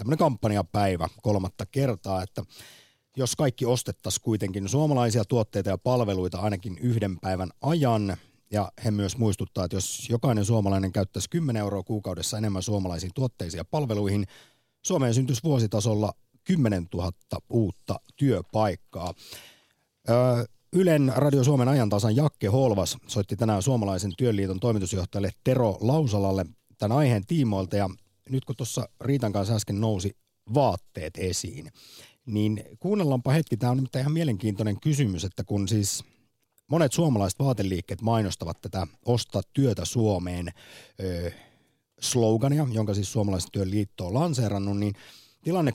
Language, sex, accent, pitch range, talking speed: Finnish, male, native, 100-130 Hz, 125 wpm